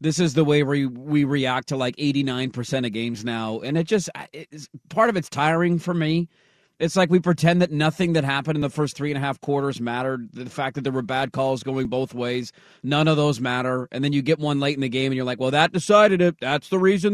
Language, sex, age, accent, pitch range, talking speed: English, male, 30-49, American, 145-200 Hz, 265 wpm